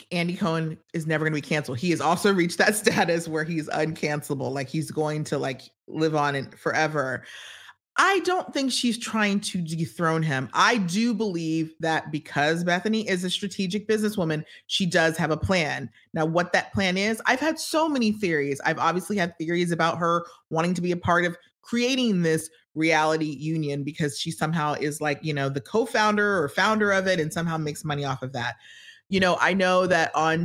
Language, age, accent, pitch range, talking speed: English, 30-49, American, 150-190 Hz, 195 wpm